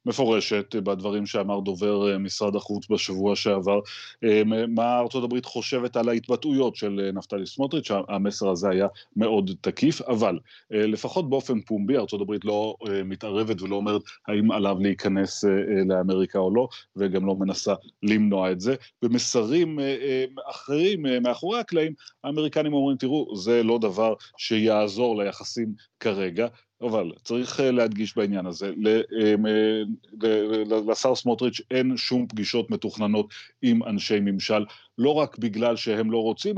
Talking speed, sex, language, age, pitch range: 125 wpm, male, Hebrew, 30-49, 105-125 Hz